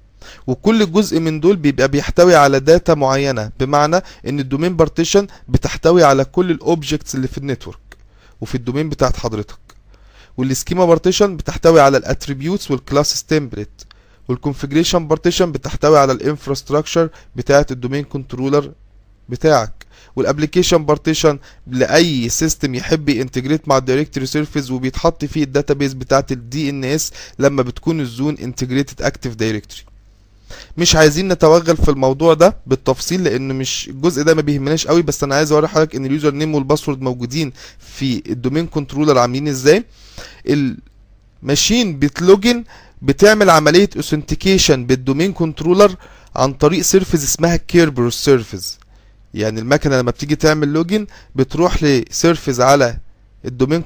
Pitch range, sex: 130-160 Hz, male